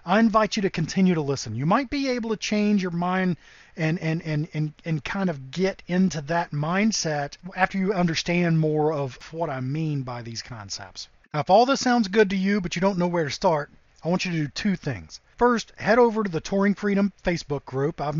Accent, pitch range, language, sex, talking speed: American, 155-205 Hz, English, male, 230 wpm